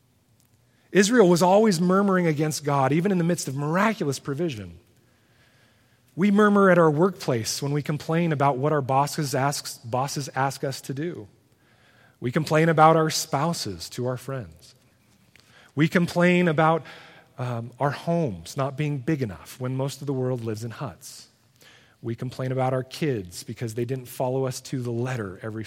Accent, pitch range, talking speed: American, 115-155 Hz, 165 wpm